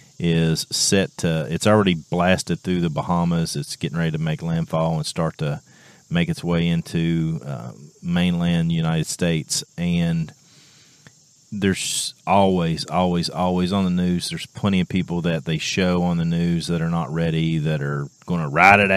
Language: English